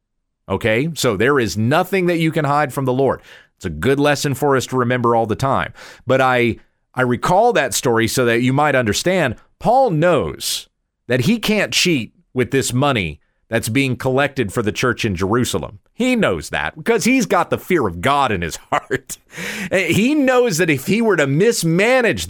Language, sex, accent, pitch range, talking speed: English, male, American, 115-175 Hz, 195 wpm